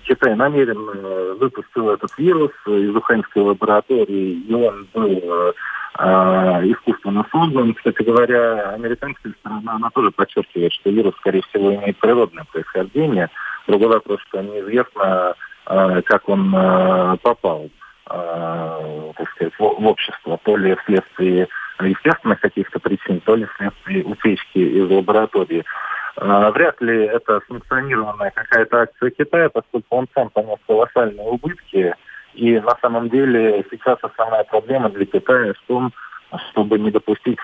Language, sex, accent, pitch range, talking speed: Russian, male, native, 95-120 Hz, 130 wpm